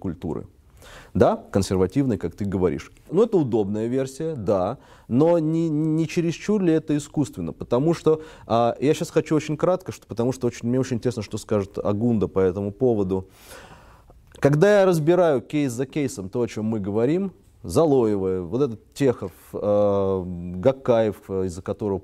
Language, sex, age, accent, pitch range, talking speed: Russian, male, 20-39, native, 100-155 Hz, 150 wpm